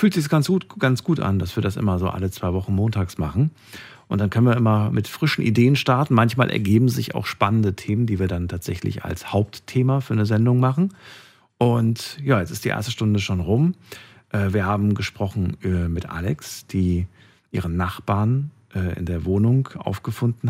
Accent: German